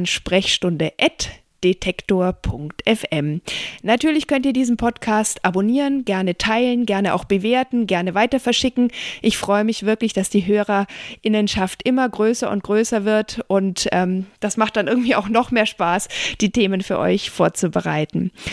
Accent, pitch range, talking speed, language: German, 195-240 Hz, 140 wpm, German